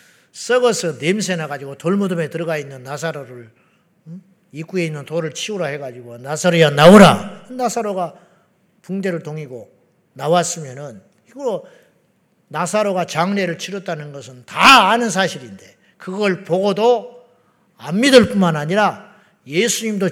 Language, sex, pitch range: Korean, male, 170-230 Hz